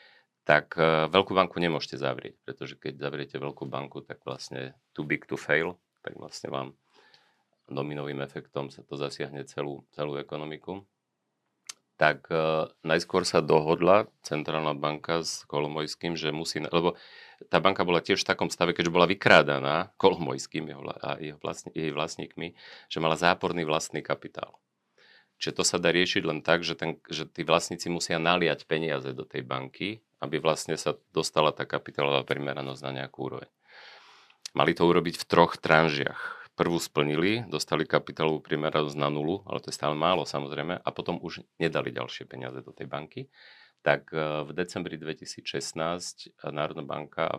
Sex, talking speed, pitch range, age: male, 155 wpm, 70-85 Hz, 40-59